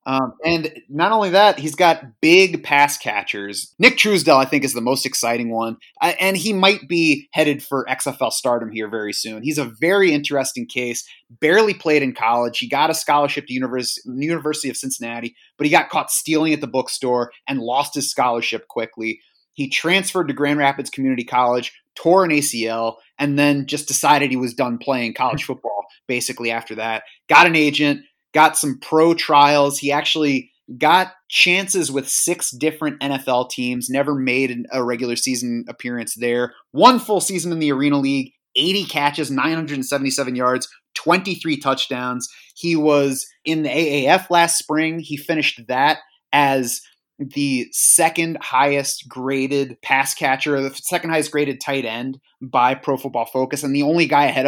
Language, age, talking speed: English, 30-49, 170 wpm